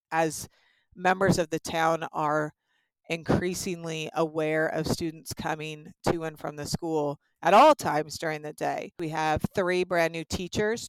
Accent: American